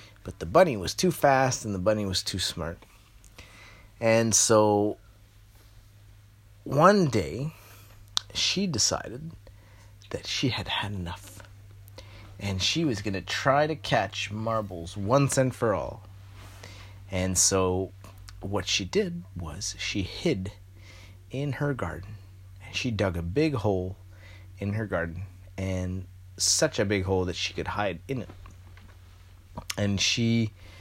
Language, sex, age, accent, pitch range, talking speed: English, male, 30-49, American, 90-105 Hz, 130 wpm